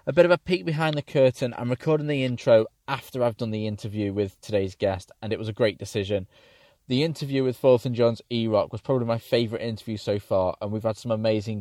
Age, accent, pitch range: 20-39, British, 110-135 Hz